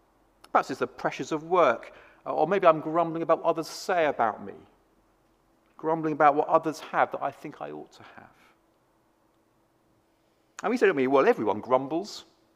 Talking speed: 165 wpm